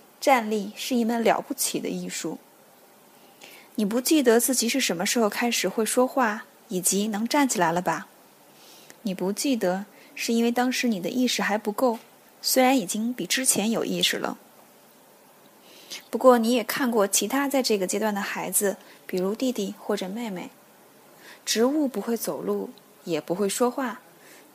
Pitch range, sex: 200-255 Hz, female